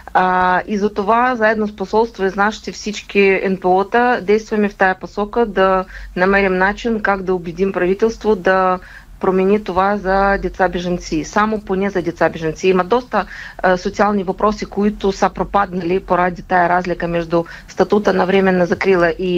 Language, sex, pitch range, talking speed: Bulgarian, female, 180-215 Hz, 145 wpm